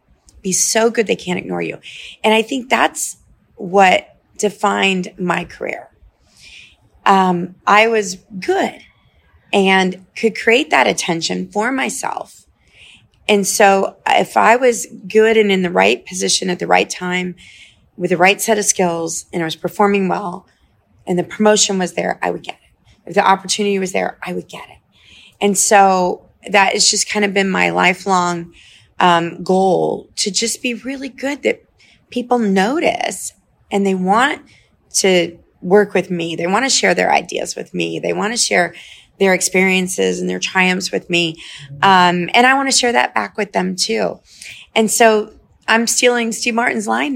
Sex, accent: female, American